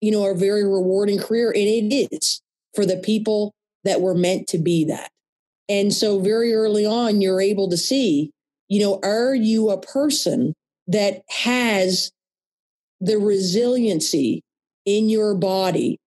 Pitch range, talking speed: 185-215 Hz, 150 wpm